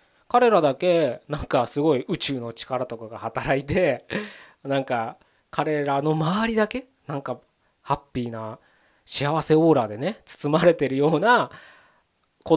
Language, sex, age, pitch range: Japanese, male, 20-39, 125-185 Hz